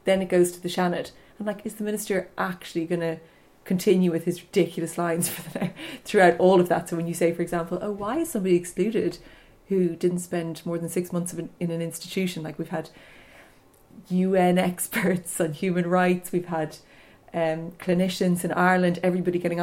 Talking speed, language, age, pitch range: 190 wpm, English, 30-49, 170-190 Hz